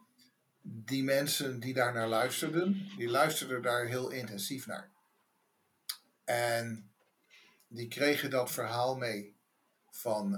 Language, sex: English, male